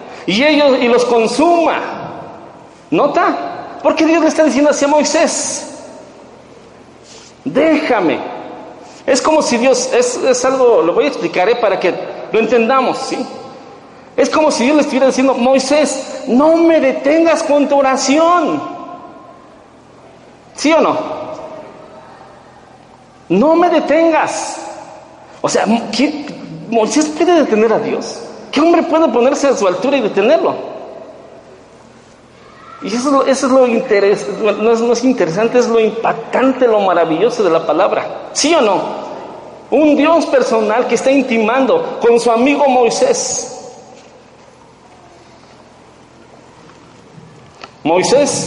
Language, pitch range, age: Spanish, 230-310 Hz, 50-69